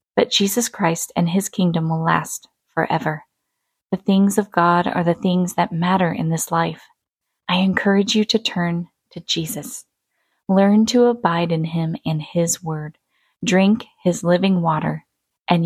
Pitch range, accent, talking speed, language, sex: 165-195 Hz, American, 155 wpm, English, female